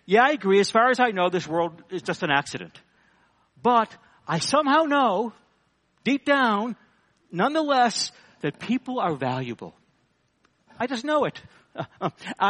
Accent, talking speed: American, 145 wpm